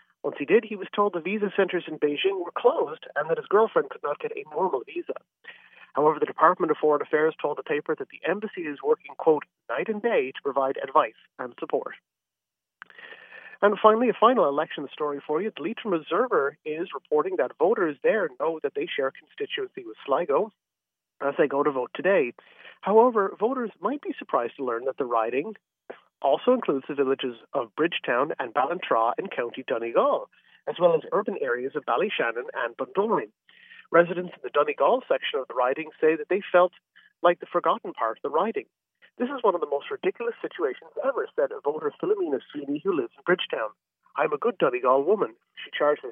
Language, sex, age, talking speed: English, male, 40-59, 195 wpm